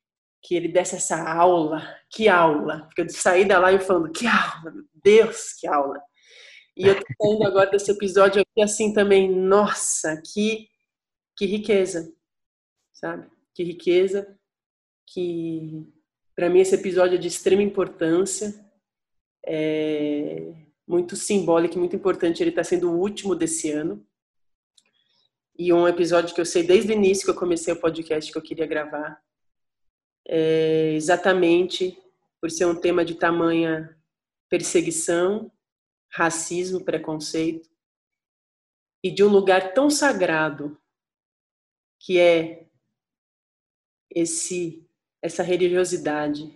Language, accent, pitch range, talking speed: Portuguese, Brazilian, 160-190 Hz, 120 wpm